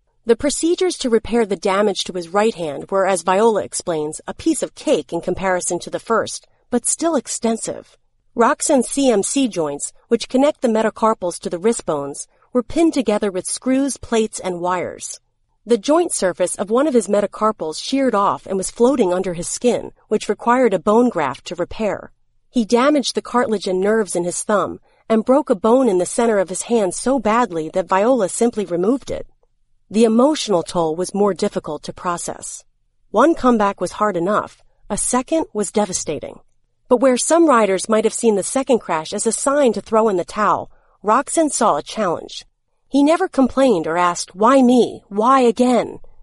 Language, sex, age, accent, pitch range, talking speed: English, female, 40-59, American, 190-250 Hz, 185 wpm